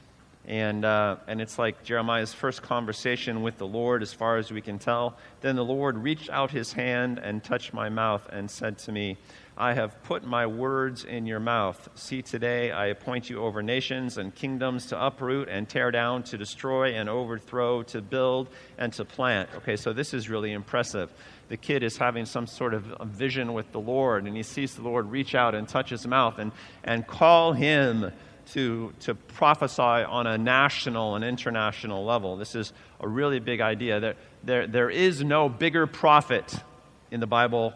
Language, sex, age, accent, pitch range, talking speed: English, male, 40-59, American, 110-135 Hz, 190 wpm